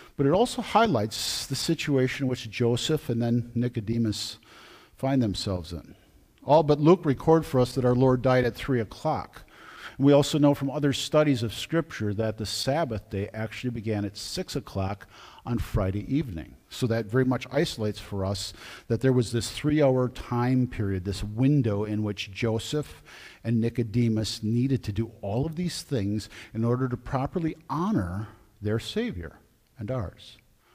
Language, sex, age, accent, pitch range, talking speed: English, male, 50-69, American, 115-150 Hz, 165 wpm